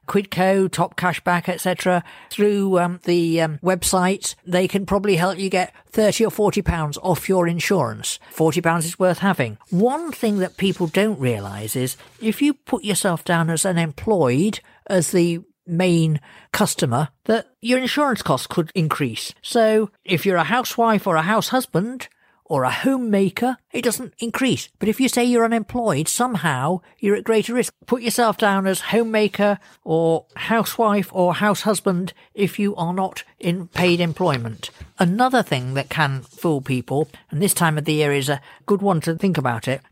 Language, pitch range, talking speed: English, 155-205 Hz, 170 wpm